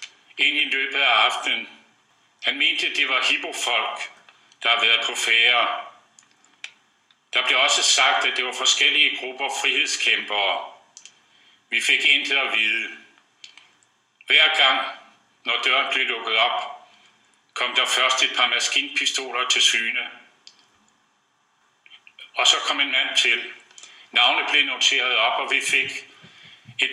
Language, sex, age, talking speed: Danish, male, 60-79, 135 wpm